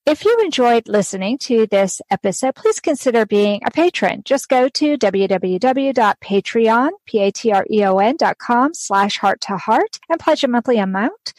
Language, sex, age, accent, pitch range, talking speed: English, female, 40-59, American, 205-275 Hz, 110 wpm